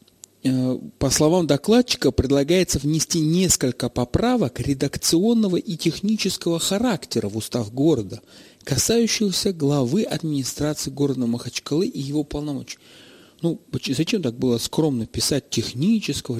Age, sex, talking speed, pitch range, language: 40-59, male, 105 wpm, 130-175 Hz, Russian